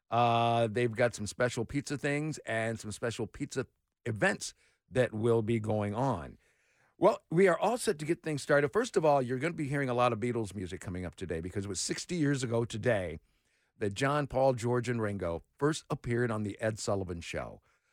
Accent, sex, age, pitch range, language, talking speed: American, male, 50-69, 115-150 Hz, English, 210 wpm